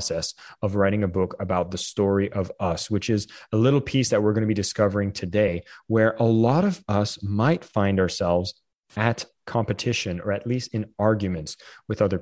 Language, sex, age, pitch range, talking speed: English, male, 30-49, 95-115 Hz, 185 wpm